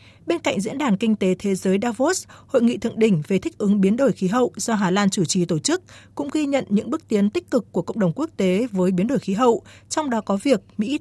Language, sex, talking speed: Vietnamese, female, 275 wpm